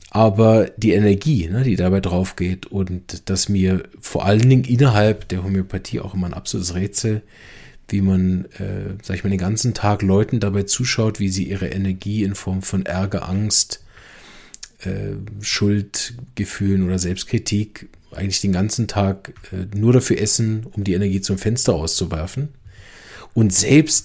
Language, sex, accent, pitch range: German, male, German, 95-120 Hz